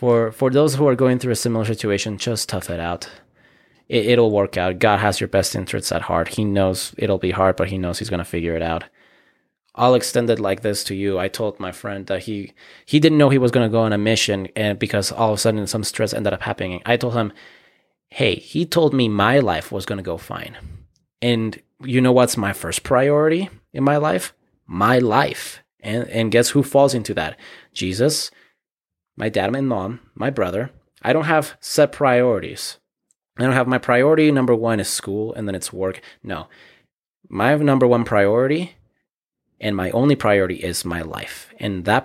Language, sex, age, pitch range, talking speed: English, male, 20-39, 95-125 Hz, 210 wpm